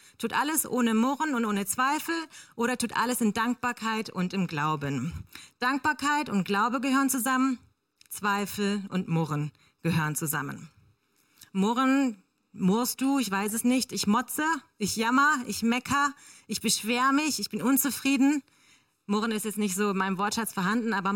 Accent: German